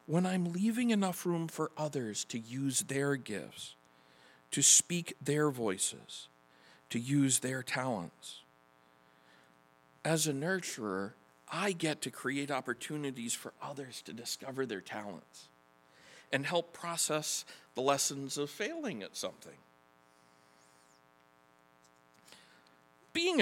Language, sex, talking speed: English, male, 110 wpm